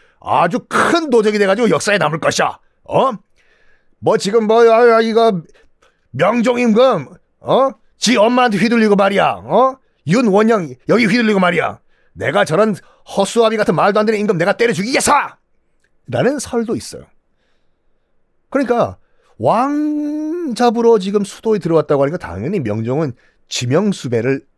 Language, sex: Korean, male